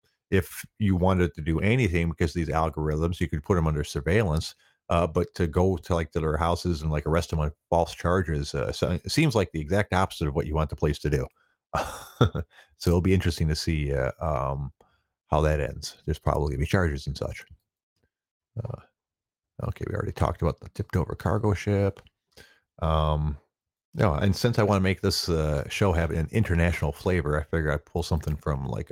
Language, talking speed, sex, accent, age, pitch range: English, 210 wpm, male, American, 40-59, 80-100 Hz